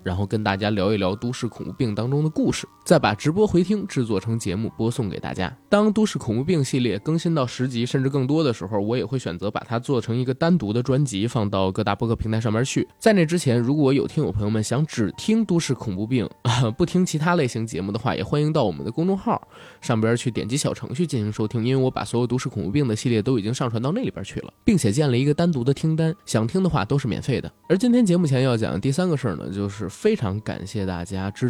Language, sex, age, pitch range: Chinese, male, 20-39, 105-145 Hz